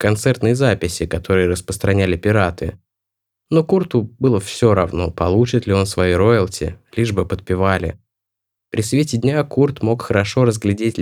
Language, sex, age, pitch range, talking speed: Russian, male, 20-39, 95-115 Hz, 135 wpm